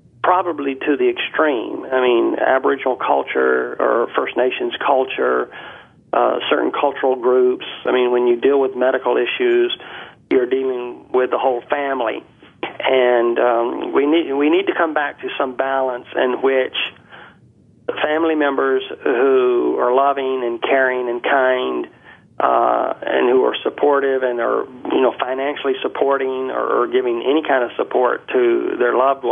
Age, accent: 40-59, American